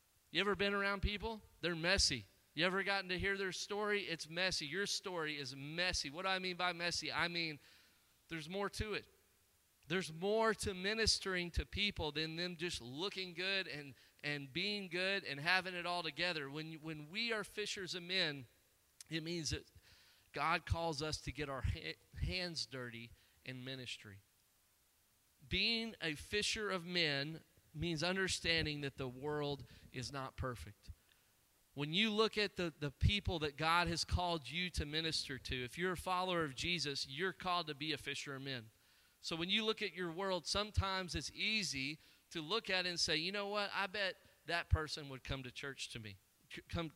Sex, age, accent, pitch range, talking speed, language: male, 40-59, American, 135-185 Hz, 185 wpm, English